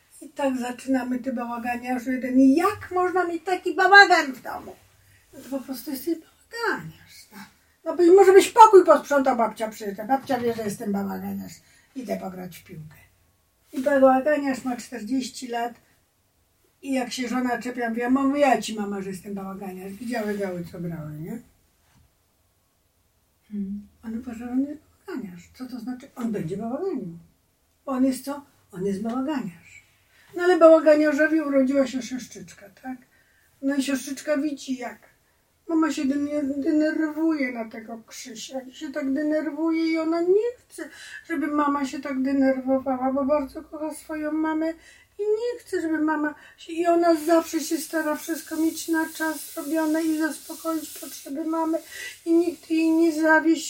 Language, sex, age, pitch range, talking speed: Polish, female, 50-69, 240-320 Hz, 155 wpm